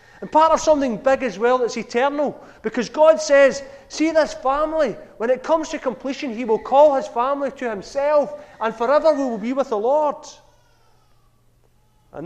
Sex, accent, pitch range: male, British, 170-245 Hz